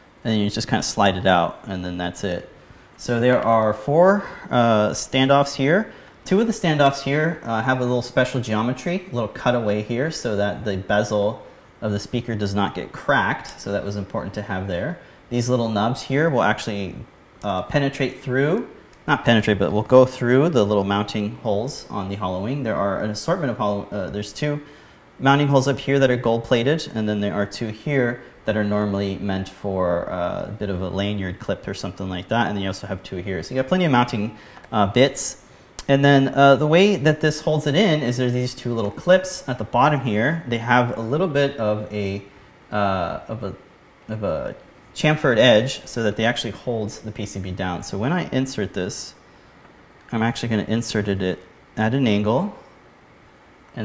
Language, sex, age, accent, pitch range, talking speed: English, male, 30-49, American, 100-135 Hz, 205 wpm